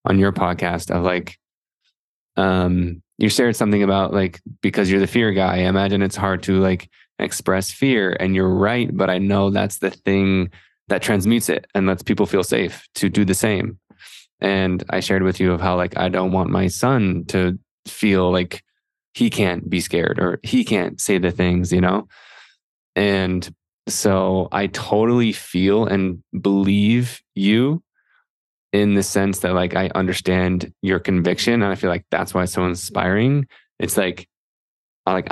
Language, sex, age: English, male, 20-39